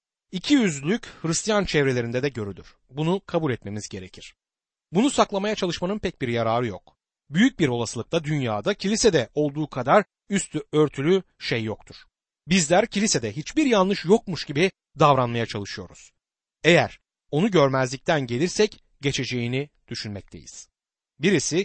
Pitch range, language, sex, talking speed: 125-185 Hz, Turkish, male, 120 wpm